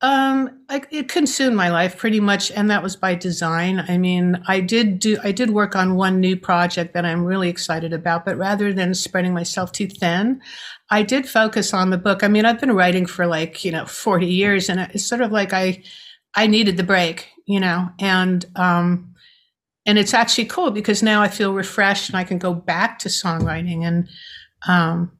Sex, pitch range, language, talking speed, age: female, 180-215 Hz, English, 200 wpm, 60-79